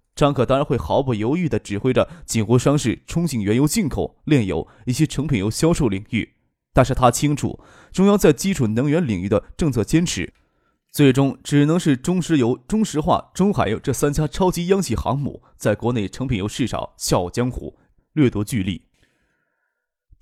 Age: 20-39